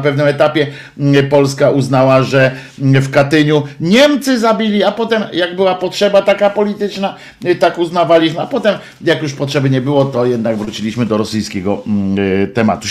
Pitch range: 135-195 Hz